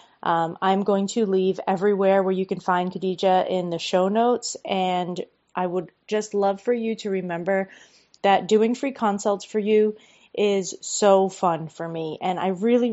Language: English